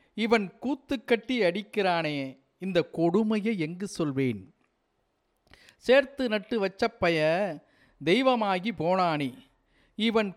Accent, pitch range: native, 160-240 Hz